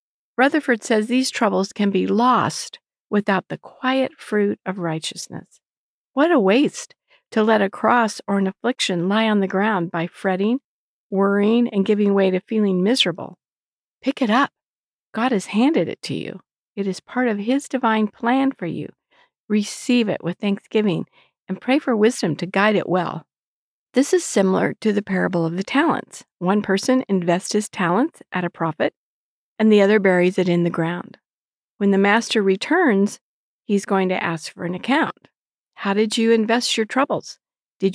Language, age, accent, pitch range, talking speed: English, 50-69, American, 190-240 Hz, 170 wpm